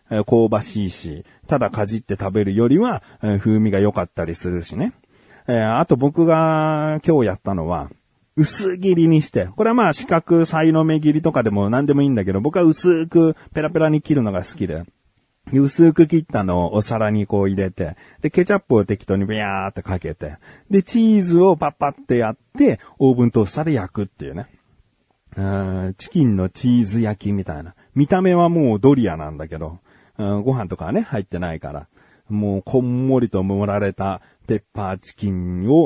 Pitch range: 95-150 Hz